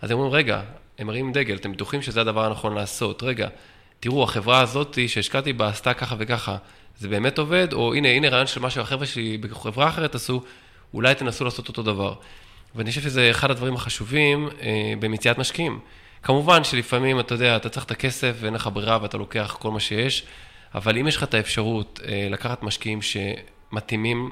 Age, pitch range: 20-39, 105-125 Hz